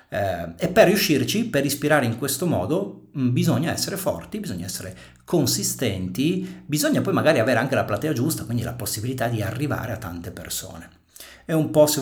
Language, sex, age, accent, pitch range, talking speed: Italian, male, 40-59, native, 105-130 Hz, 175 wpm